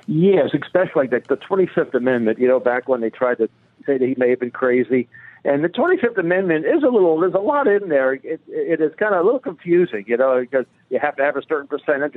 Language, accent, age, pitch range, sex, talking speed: English, American, 60-79, 125-165 Hz, male, 240 wpm